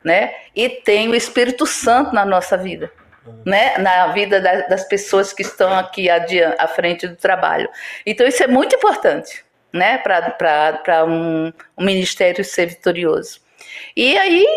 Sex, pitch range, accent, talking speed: female, 185-245 Hz, Brazilian, 150 wpm